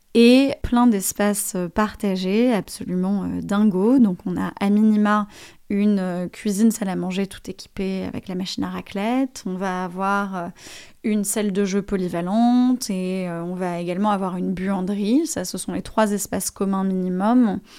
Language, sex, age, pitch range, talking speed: French, female, 20-39, 185-215 Hz, 155 wpm